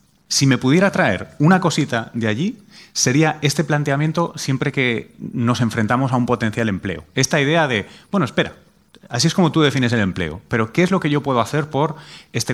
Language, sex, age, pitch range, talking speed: Spanish, male, 30-49, 110-150 Hz, 195 wpm